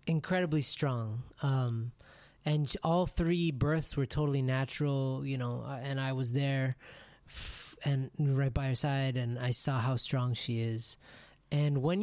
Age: 20-39